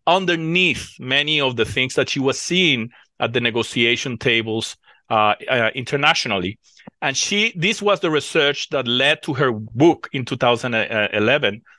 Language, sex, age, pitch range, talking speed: English, male, 40-59, 115-150 Hz, 150 wpm